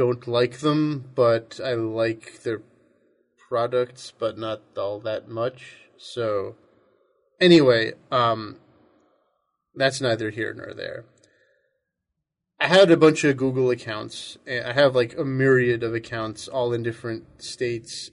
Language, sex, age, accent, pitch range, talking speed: English, male, 30-49, American, 115-140 Hz, 130 wpm